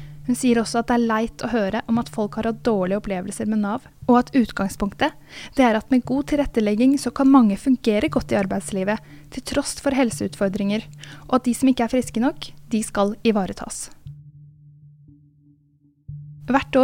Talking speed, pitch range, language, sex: 180 wpm, 180-235 Hz, English, female